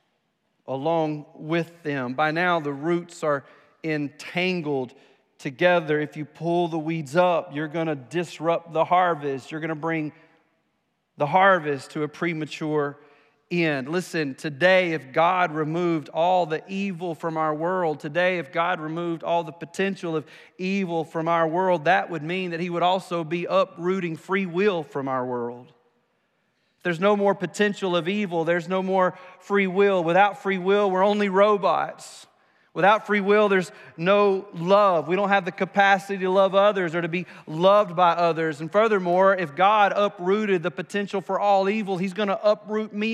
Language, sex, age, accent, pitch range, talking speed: English, male, 40-59, American, 160-200 Hz, 170 wpm